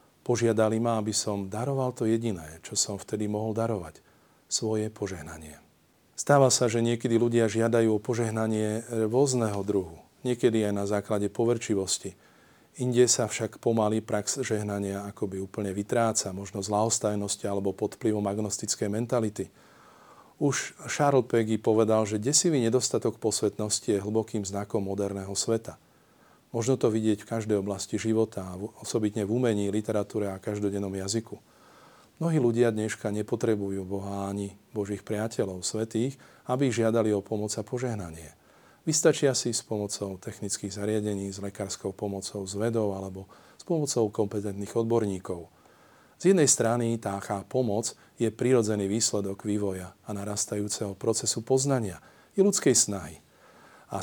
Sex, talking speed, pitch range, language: male, 130 wpm, 100-115 Hz, Slovak